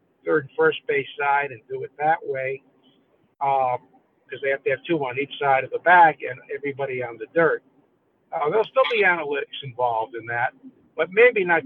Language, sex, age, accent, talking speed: English, male, 60-79, American, 200 wpm